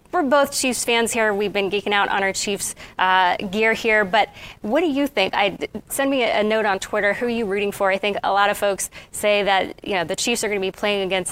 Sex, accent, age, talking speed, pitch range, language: female, American, 20-39, 255 wpm, 200-245 Hz, English